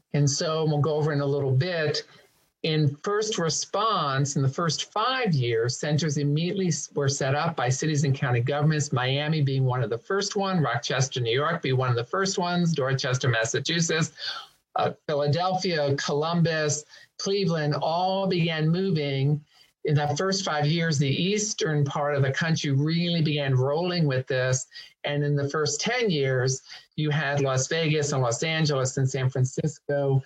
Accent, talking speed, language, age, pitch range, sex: American, 165 wpm, English, 50-69, 135-160 Hz, male